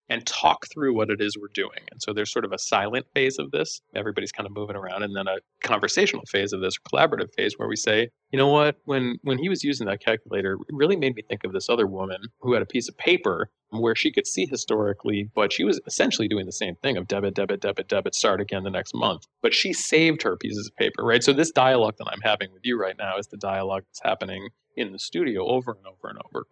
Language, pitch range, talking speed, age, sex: English, 100-125 Hz, 260 wpm, 30-49, male